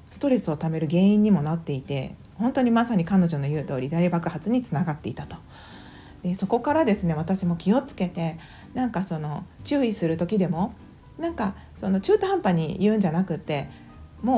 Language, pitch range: Japanese, 165-235 Hz